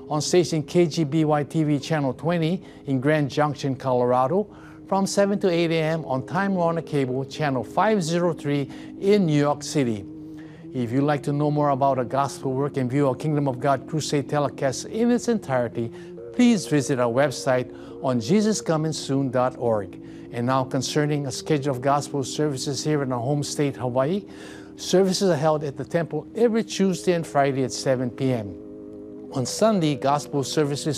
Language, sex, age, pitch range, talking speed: English, male, 50-69, 130-165 Hz, 160 wpm